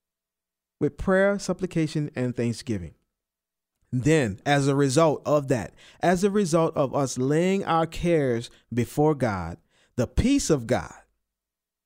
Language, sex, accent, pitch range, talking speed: English, male, American, 125-205 Hz, 125 wpm